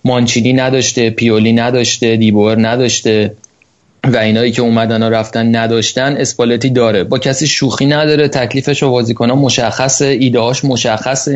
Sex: male